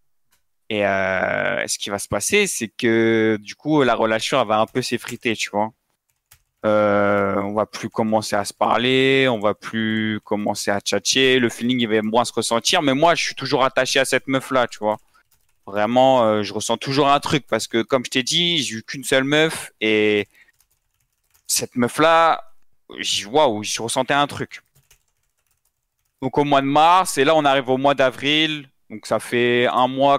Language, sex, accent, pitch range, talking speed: French, male, French, 105-130 Hz, 190 wpm